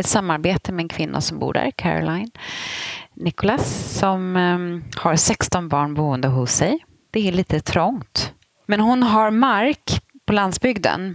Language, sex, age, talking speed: Swedish, female, 30-49, 145 wpm